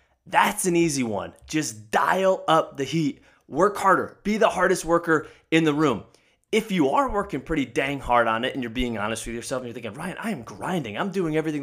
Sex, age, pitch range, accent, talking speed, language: male, 20-39, 130-175 Hz, American, 220 wpm, English